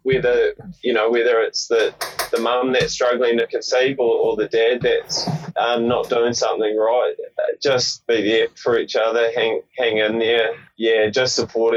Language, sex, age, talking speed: English, male, 20-39, 180 wpm